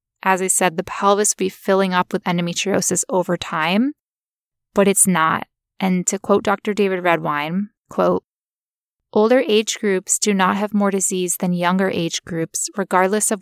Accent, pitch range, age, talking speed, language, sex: American, 180-205 Hz, 20-39, 165 wpm, English, female